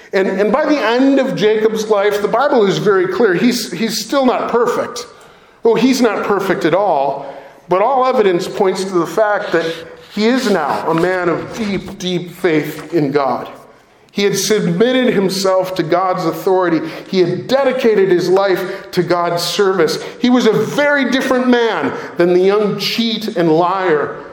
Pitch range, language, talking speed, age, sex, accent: 160-220 Hz, English, 175 wpm, 40-59, male, American